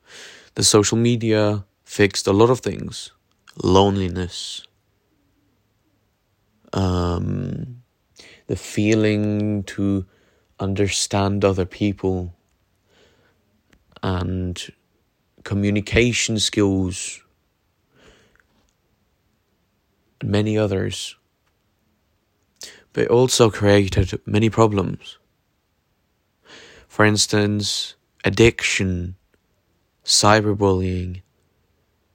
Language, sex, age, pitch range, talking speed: English, male, 20-39, 95-110 Hz, 60 wpm